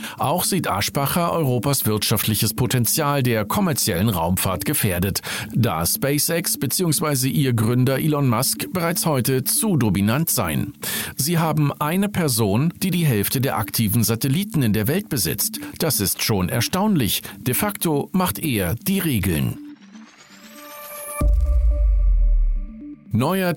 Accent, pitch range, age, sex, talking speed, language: German, 110-160 Hz, 50-69, male, 120 wpm, German